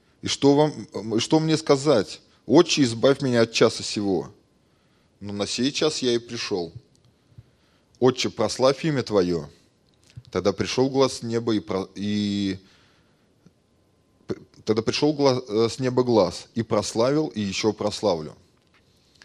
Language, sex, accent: Russian, male, native